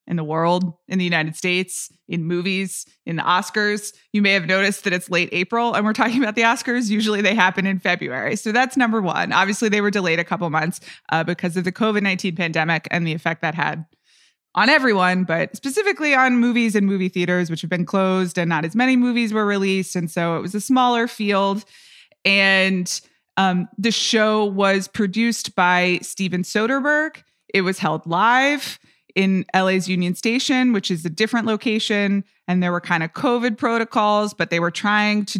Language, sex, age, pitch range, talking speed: English, female, 20-39, 180-225 Hz, 195 wpm